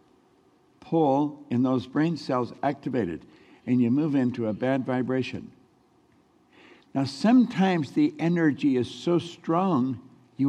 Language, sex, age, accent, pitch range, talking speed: English, male, 60-79, American, 120-170 Hz, 120 wpm